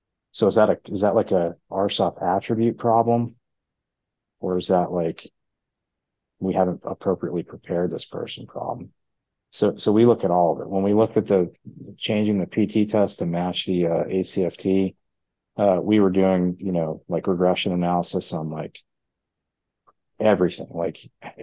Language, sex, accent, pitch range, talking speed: English, male, American, 90-110 Hz, 160 wpm